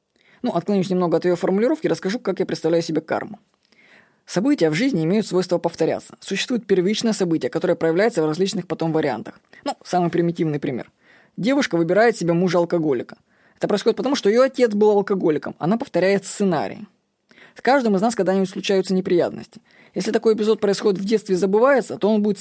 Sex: female